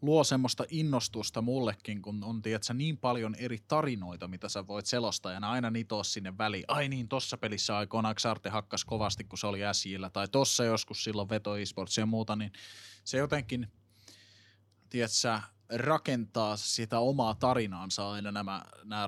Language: Finnish